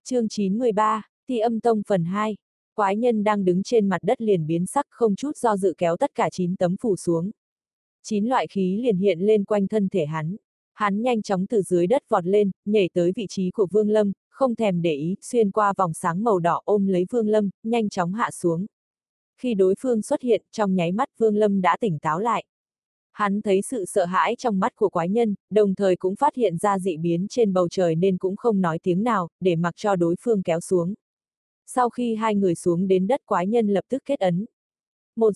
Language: Vietnamese